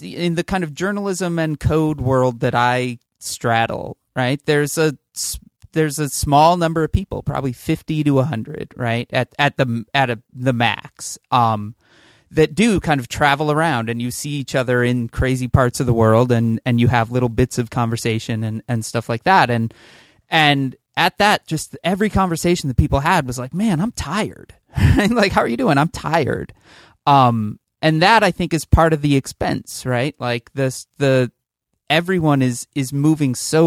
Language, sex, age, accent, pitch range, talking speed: English, male, 30-49, American, 120-150 Hz, 185 wpm